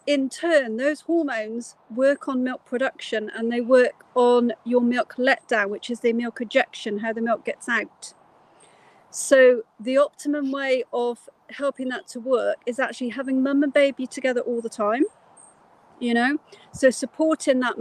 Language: English